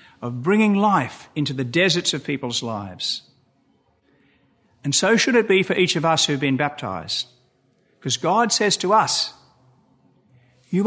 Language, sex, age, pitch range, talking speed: English, male, 50-69, 135-180 Hz, 155 wpm